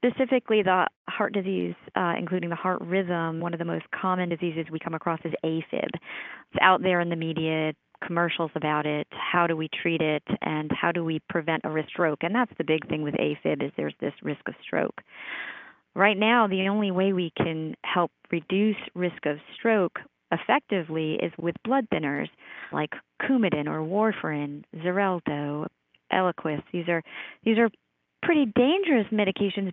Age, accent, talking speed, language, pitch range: 40-59, American, 170 wpm, English, 165-205 Hz